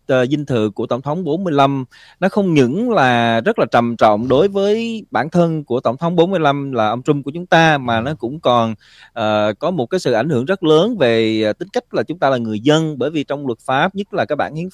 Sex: male